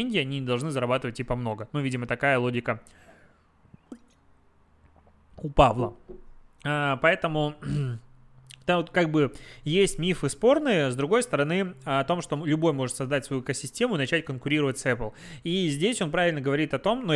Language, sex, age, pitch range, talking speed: Russian, male, 20-39, 130-165 Hz, 160 wpm